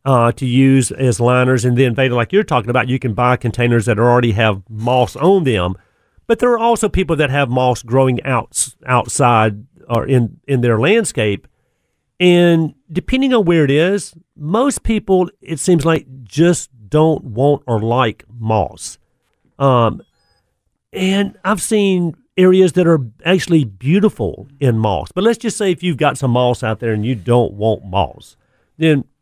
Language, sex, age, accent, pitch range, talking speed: English, male, 50-69, American, 120-165 Hz, 165 wpm